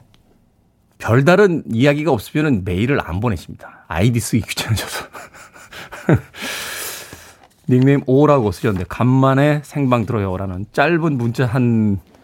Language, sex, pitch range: Korean, male, 110-155 Hz